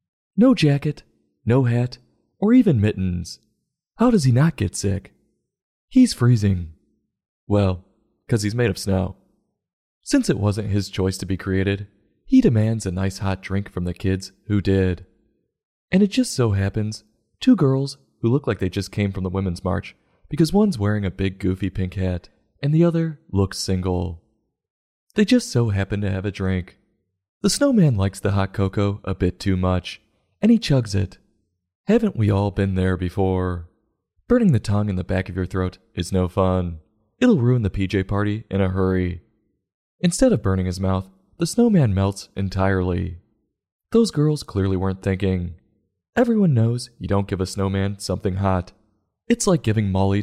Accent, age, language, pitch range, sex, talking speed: American, 30-49, English, 95-115 Hz, male, 175 wpm